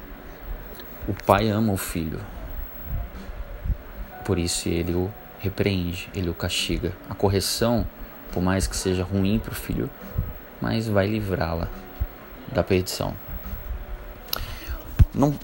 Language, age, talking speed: Portuguese, 20-39, 115 wpm